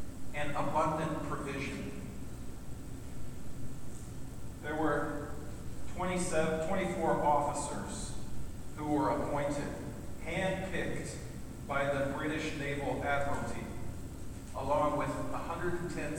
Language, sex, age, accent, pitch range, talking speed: English, male, 40-59, American, 130-155 Hz, 75 wpm